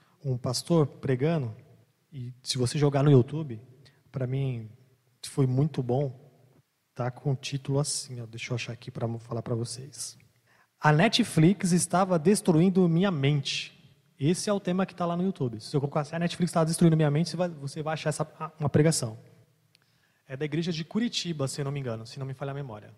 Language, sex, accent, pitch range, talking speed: Portuguese, male, Brazilian, 130-175 Hz, 205 wpm